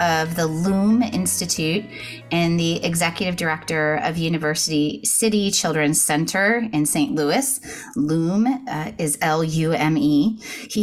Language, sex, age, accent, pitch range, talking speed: English, female, 30-49, American, 155-195 Hz, 135 wpm